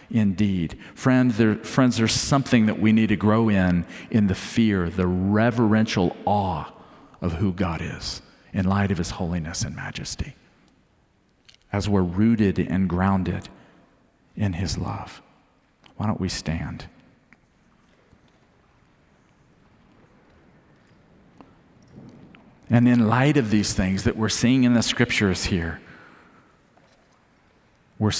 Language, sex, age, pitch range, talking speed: English, male, 50-69, 95-120 Hz, 115 wpm